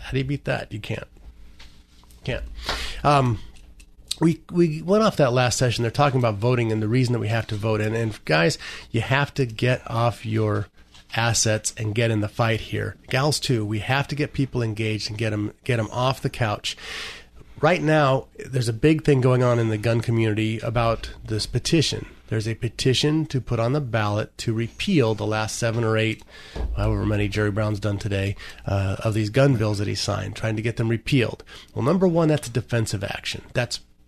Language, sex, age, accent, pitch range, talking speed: English, male, 30-49, American, 105-130 Hz, 210 wpm